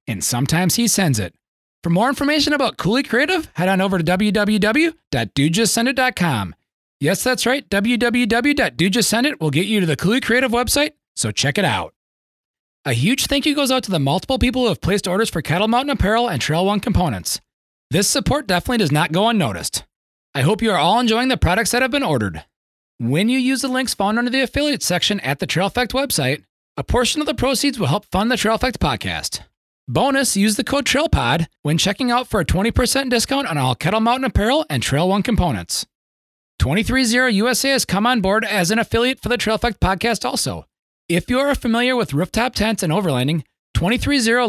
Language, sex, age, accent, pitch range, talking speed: English, male, 30-49, American, 160-250 Hz, 195 wpm